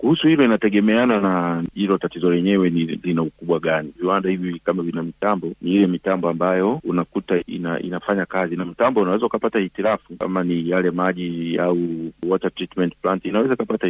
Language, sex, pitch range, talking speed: Swahili, male, 85-100 Hz, 165 wpm